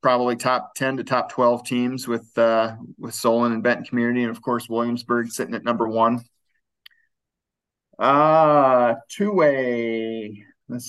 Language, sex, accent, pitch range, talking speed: English, male, American, 115-130 Hz, 140 wpm